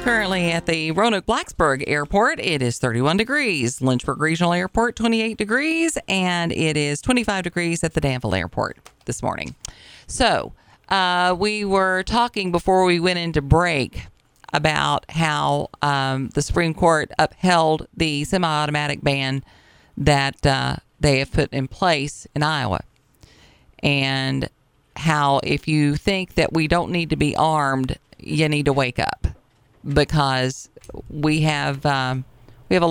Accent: American